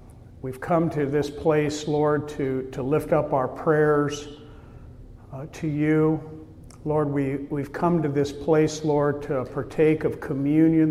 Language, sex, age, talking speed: English, male, 50-69, 145 wpm